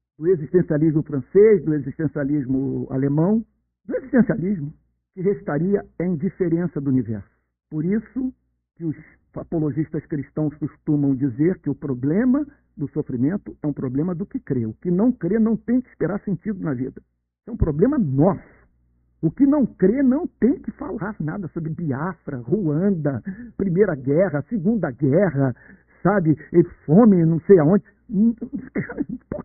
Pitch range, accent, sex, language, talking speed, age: 150-230 Hz, Brazilian, male, Portuguese, 145 wpm, 60-79